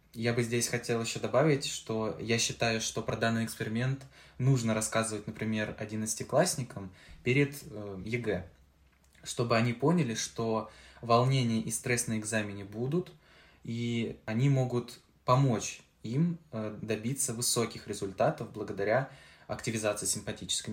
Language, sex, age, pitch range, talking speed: Russian, male, 20-39, 105-130 Hz, 115 wpm